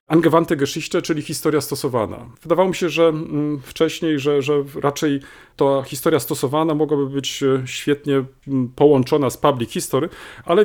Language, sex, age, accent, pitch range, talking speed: Polish, male, 40-59, native, 130-165 Hz, 135 wpm